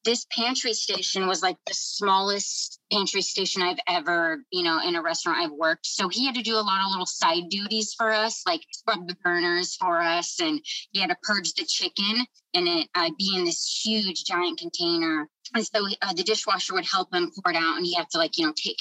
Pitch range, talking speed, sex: 175-240 Hz, 235 wpm, female